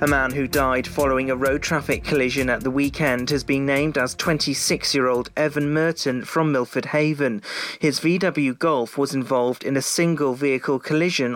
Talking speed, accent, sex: 170 wpm, British, male